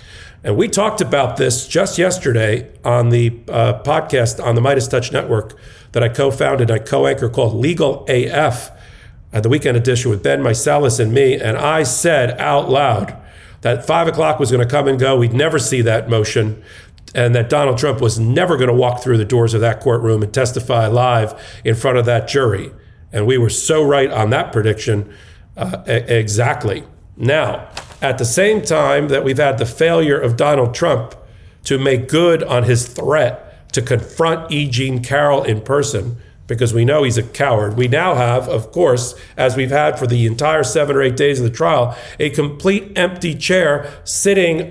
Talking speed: 185 wpm